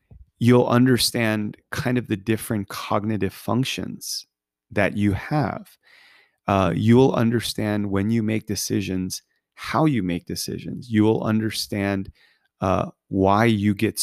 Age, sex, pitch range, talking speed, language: 30-49, male, 95-110 Hz, 125 wpm, English